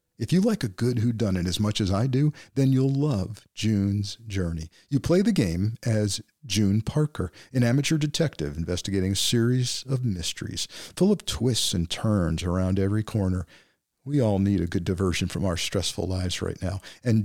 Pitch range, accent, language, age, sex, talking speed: 95-130 Hz, American, English, 50-69, male, 180 wpm